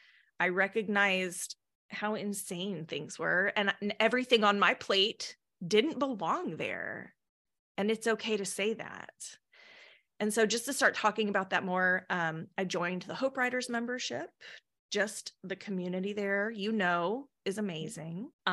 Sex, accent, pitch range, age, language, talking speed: female, American, 175-215 Hz, 20-39, English, 145 wpm